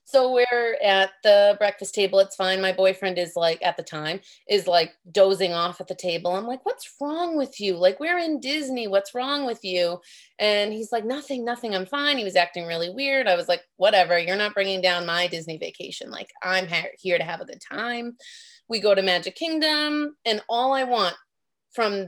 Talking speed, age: 210 wpm, 30-49